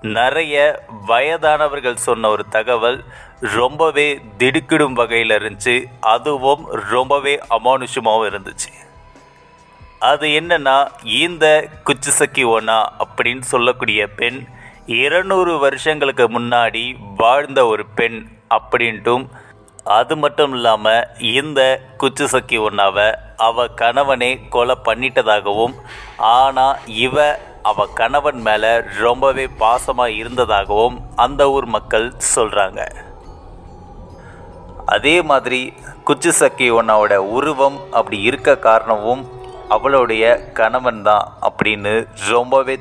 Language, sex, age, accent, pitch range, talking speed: Tamil, male, 30-49, native, 110-140 Hz, 85 wpm